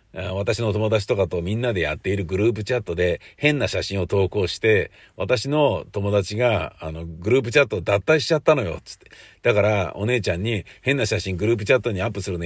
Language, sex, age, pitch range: Japanese, male, 50-69, 95-135 Hz